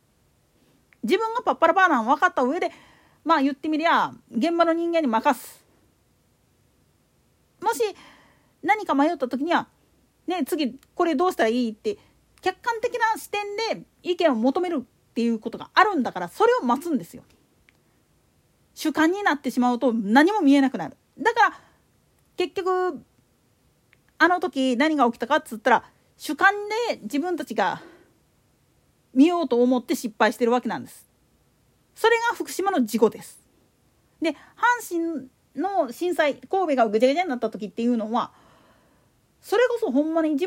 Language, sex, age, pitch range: Japanese, female, 40-59, 250-370 Hz